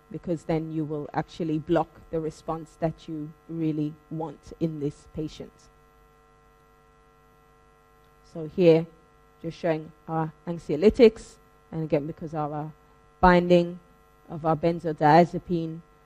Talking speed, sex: 110 wpm, female